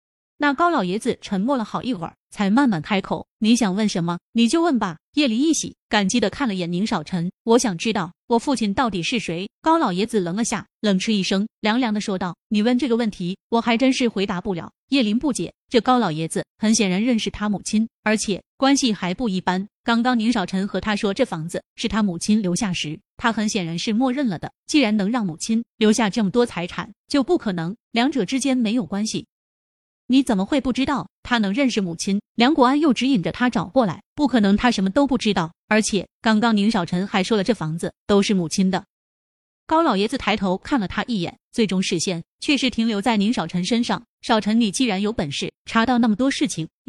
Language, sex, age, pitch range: Chinese, female, 20-39, 190-245 Hz